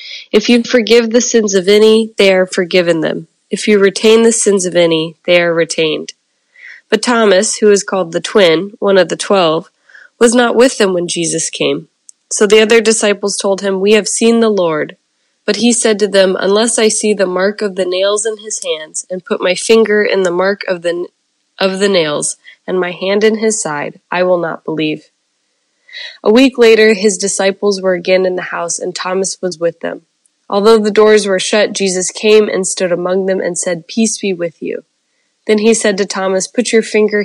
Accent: American